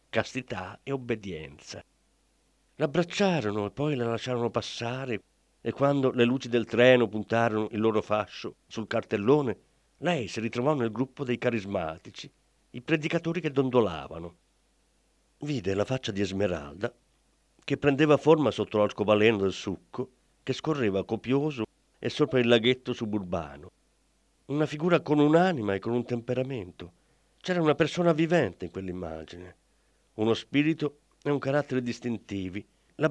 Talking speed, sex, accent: 130 wpm, male, native